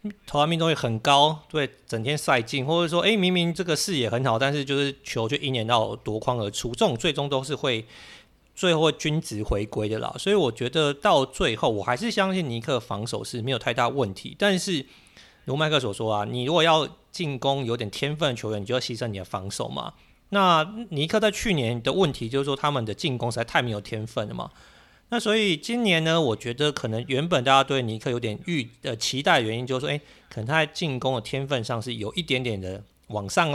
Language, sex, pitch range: Chinese, male, 115-160 Hz